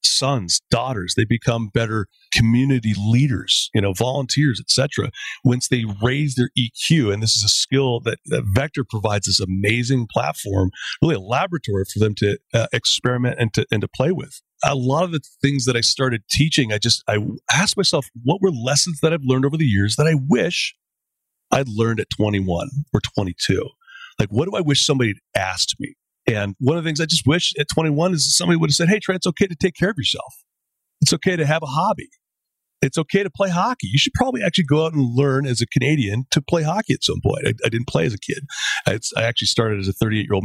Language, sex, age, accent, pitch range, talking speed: English, male, 40-59, American, 110-150 Hz, 220 wpm